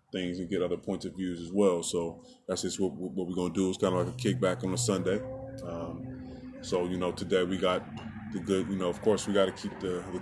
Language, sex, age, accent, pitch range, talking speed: English, male, 20-39, American, 90-100 Hz, 270 wpm